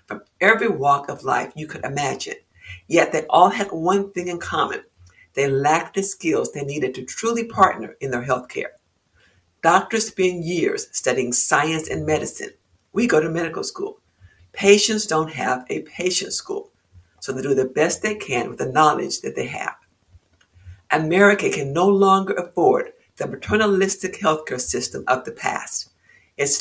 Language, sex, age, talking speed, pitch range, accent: English, female, 60-79, 165 wpm, 130-195 Hz, American